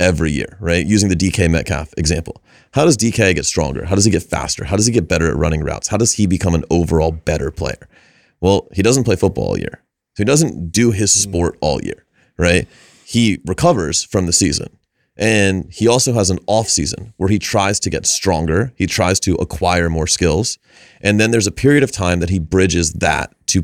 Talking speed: 215 wpm